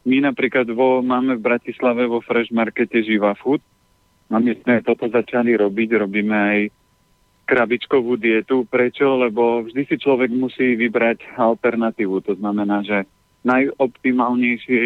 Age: 40-59